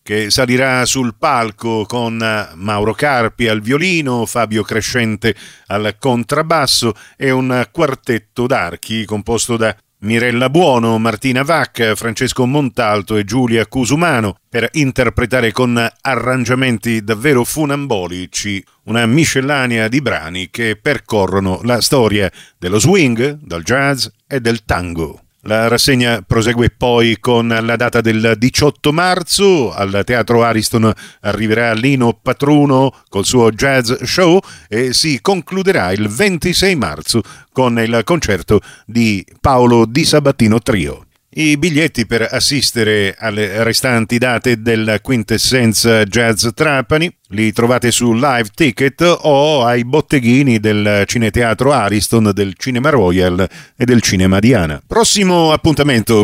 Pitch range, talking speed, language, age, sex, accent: 110-135 Hz, 120 wpm, Italian, 50-69, male, native